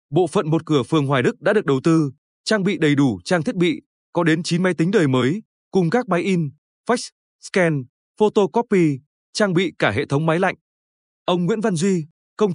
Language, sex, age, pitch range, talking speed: Vietnamese, male, 20-39, 150-200 Hz, 210 wpm